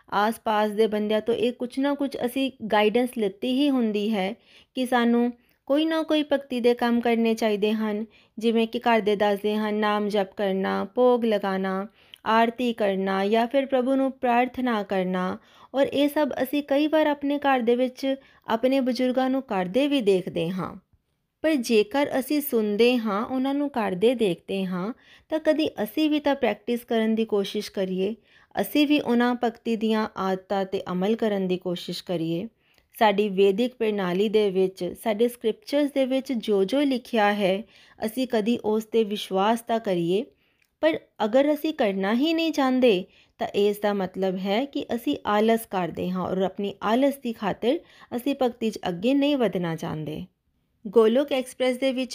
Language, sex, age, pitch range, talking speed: Punjabi, female, 20-39, 205-260 Hz, 160 wpm